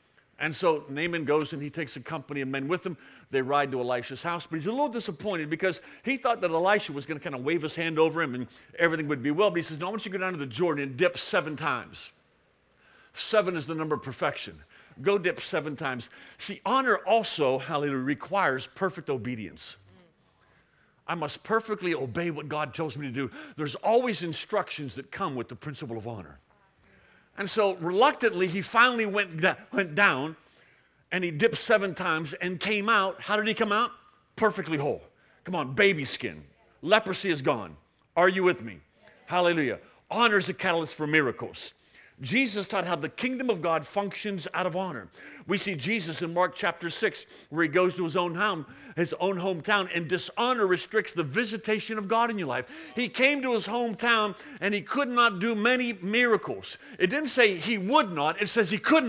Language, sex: English, male